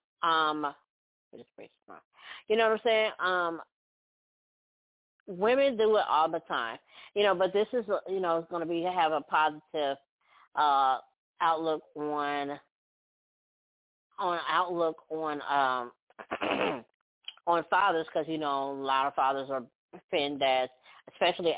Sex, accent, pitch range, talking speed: female, American, 140-185 Hz, 135 wpm